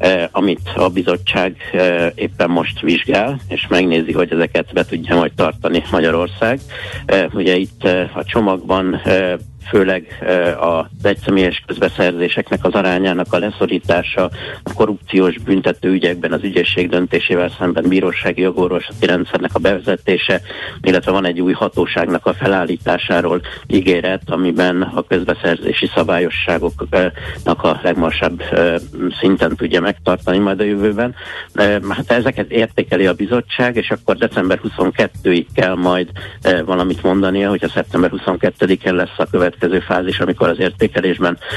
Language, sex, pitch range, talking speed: Hungarian, male, 90-100 Hz, 120 wpm